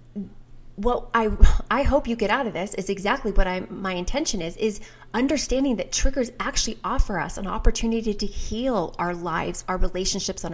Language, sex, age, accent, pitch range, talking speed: English, female, 20-39, American, 185-230 Hz, 175 wpm